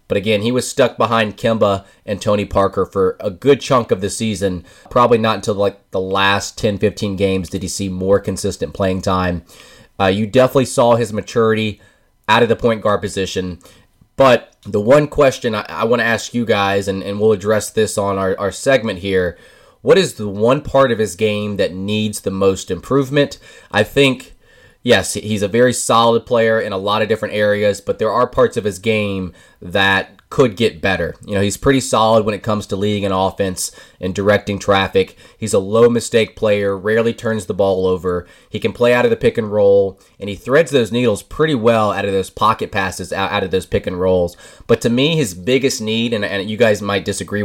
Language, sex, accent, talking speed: English, male, American, 210 wpm